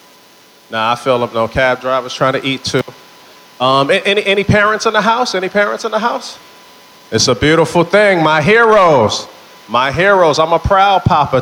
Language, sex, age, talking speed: English, male, 30-49, 195 wpm